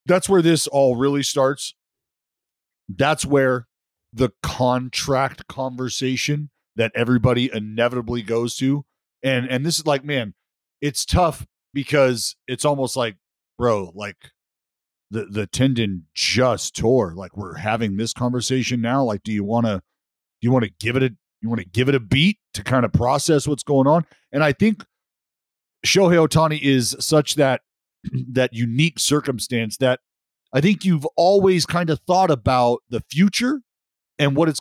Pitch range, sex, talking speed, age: 115-150 Hz, male, 155 wpm, 40-59